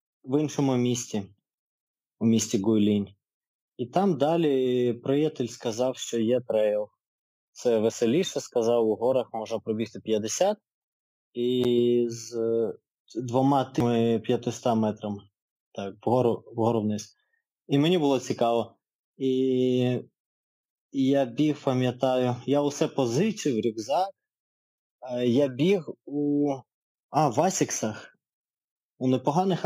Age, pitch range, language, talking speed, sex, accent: 20-39, 115-150 Hz, Ukrainian, 105 wpm, male, native